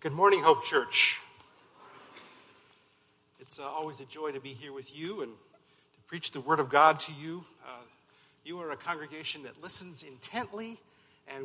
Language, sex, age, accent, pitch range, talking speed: English, male, 50-69, American, 140-185 Hz, 170 wpm